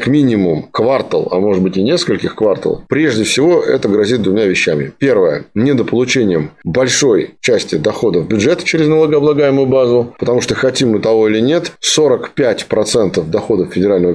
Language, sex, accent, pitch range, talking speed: Russian, male, native, 115-165 Hz, 145 wpm